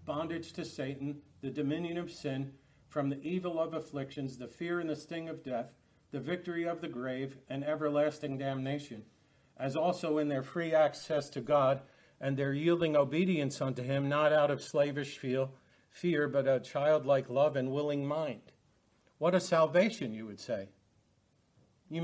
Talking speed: 165 wpm